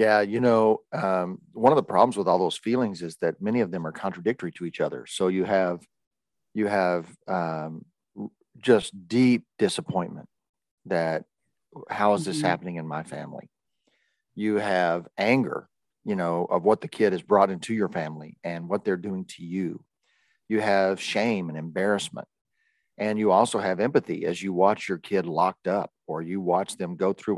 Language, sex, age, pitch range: English, male, 40-59, 90-105 Hz